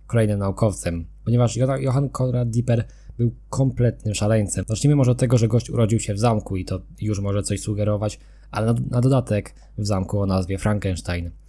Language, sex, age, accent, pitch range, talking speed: Polish, male, 20-39, native, 100-115 Hz, 180 wpm